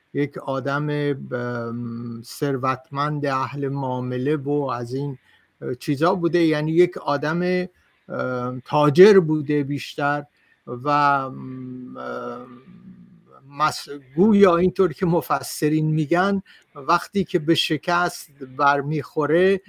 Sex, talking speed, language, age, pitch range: male, 85 wpm, Persian, 60-79, 135-165 Hz